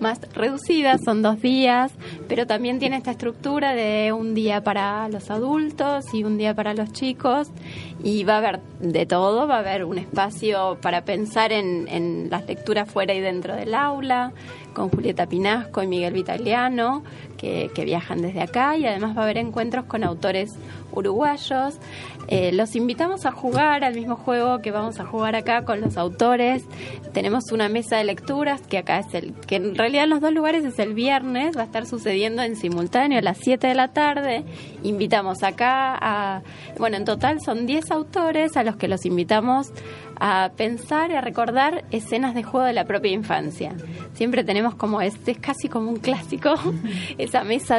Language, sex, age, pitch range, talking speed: Spanish, female, 20-39, 190-250 Hz, 185 wpm